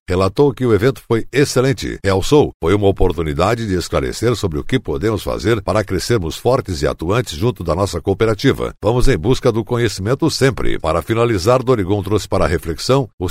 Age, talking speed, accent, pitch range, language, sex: 60-79, 175 wpm, Brazilian, 95-125 Hz, Portuguese, male